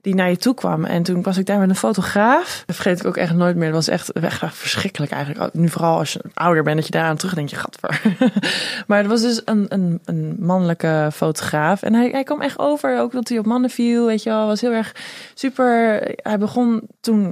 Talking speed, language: 245 wpm, Dutch